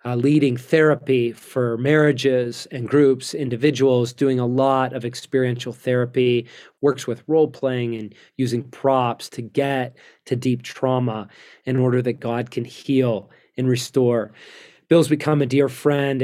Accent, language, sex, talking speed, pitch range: American, English, male, 140 wpm, 125-140 Hz